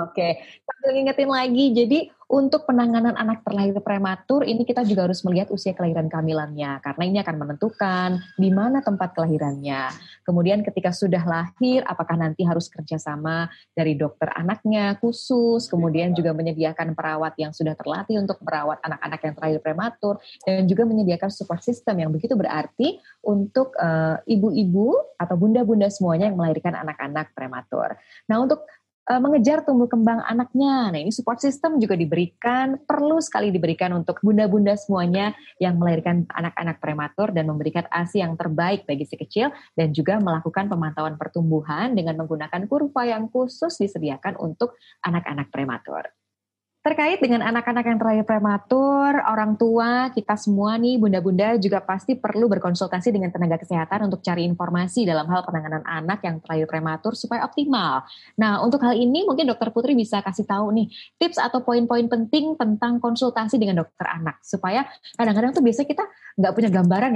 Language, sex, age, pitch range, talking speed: Indonesian, female, 20-39, 165-235 Hz, 155 wpm